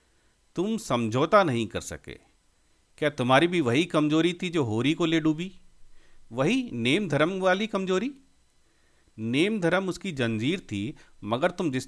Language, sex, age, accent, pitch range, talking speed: Hindi, male, 40-59, native, 110-175 Hz, 145 wpm